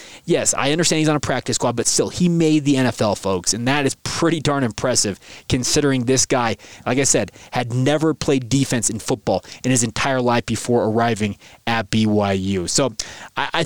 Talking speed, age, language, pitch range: 190 wpm, 20-39, English, 125-155 Hz